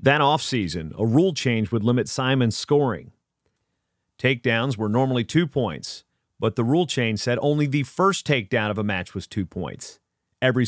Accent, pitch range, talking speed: American, 110-130 Hz, 170 wpm